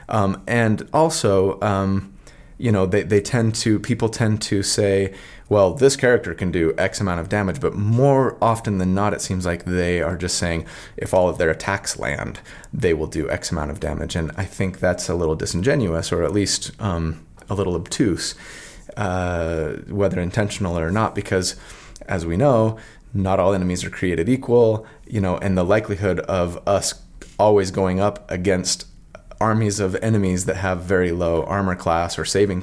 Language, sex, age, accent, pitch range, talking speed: English, male, 30-49, American, 85-105 Hz, 180 wpm